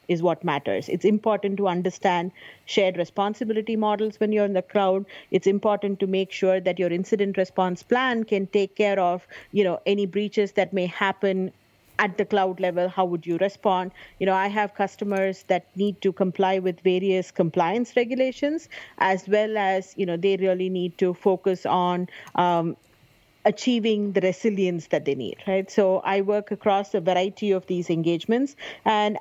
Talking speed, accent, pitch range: 175 wpm, Indian, 185-210 Hz